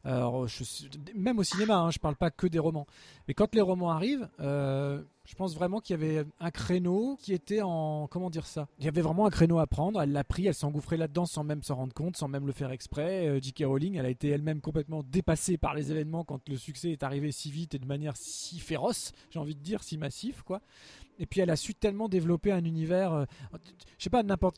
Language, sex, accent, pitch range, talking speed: French, male, French, 150-185 Hz, 245 wpm